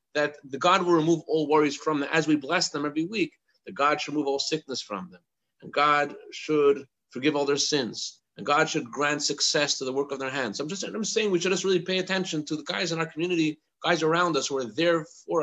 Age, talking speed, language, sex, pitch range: 30-49, 255 wpm, English, male, 145-175 Hz